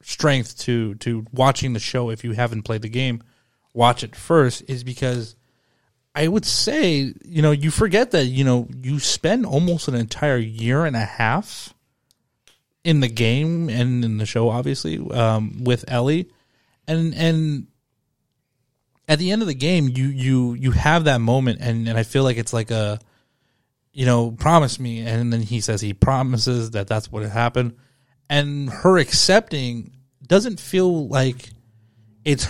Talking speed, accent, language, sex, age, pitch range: 170 wpm, American, English, male, 30-49, 115-140 Hz